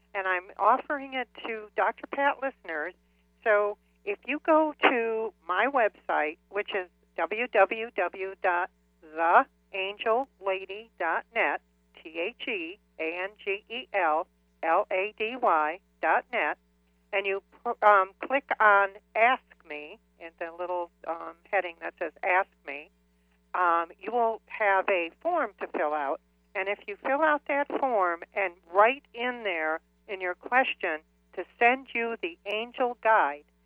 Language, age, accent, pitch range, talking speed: English, 60-79, American, 170-235 Hz, 115 wpm